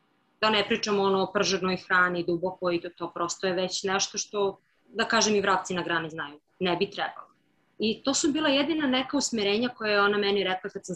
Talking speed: 215 wpm